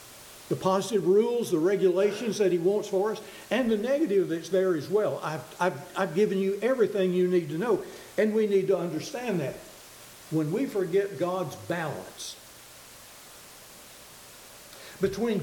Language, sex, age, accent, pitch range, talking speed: English, male, 60-79, American, 170-215 Hz, 150 wpm